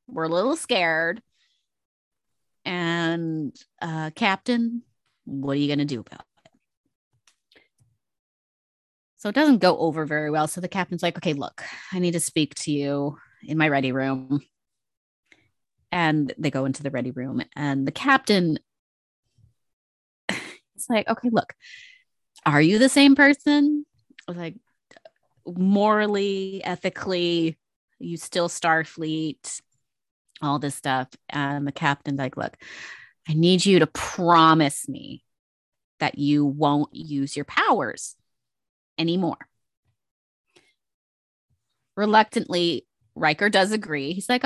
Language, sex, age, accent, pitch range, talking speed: English, female, 30-49, American, 145-215 Hz, 125 wpm